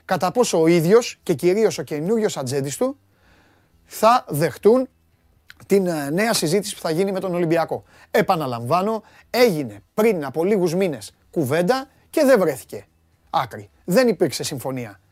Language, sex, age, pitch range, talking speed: Greek, male, 30-49, 140-205 Hz, 140 wpm